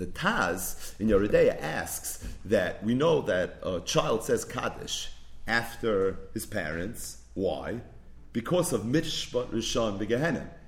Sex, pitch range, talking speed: male, 110-160 Hz, 125 wpm